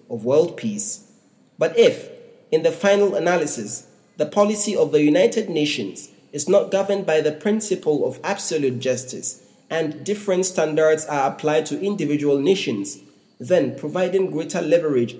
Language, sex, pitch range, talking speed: English, male, 135-175 Hz, 140 wpm